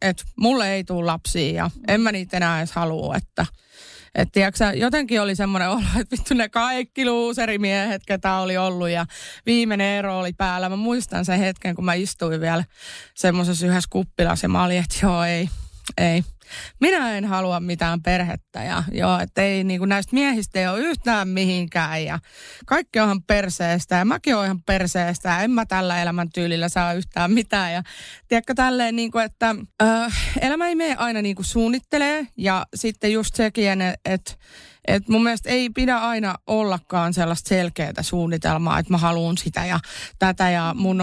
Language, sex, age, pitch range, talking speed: Finnish, female, 30-49, 180-225 Hz, 175 wpm